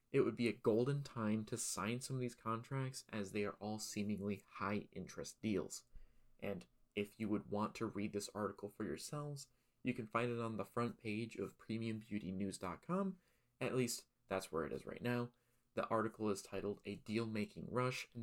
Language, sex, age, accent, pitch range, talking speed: English, male, 20-39, American, 105-120 Hz, 190 wpm